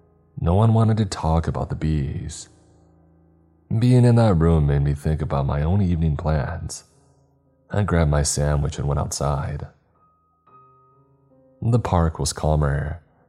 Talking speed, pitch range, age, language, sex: 140 wpm, 75-95 Hz, 30-49, English, male